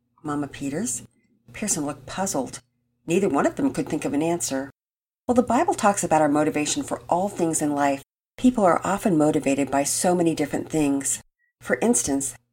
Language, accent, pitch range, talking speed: English, American, 145-195 Hz, 180 wpm